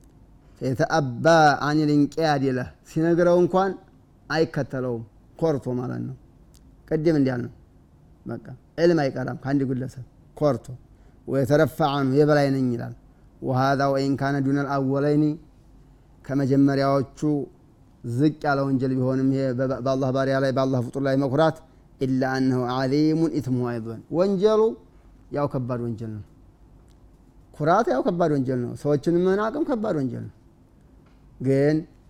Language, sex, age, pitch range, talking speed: Amharic, male, 30-49, 125-150 Hz, 50 wpm